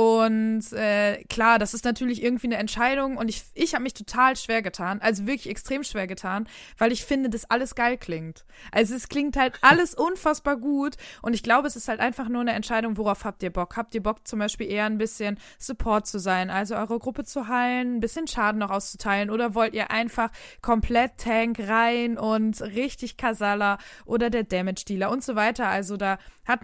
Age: 20-39